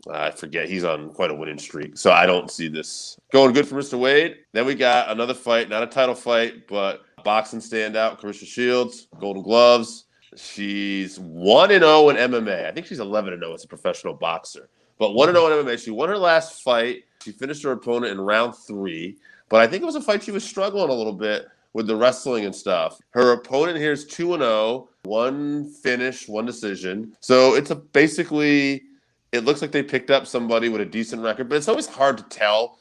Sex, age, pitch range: male, 30-49, 110-130 Hz